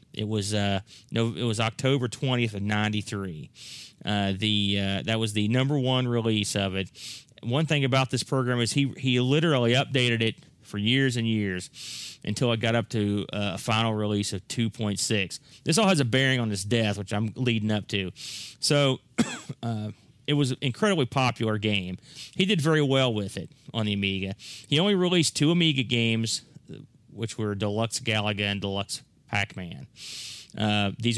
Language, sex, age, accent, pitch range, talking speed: English, male, 30-49, American, 110-130 Hz, 180 wpm